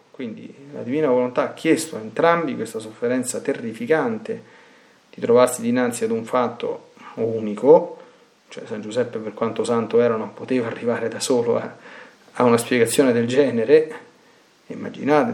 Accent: native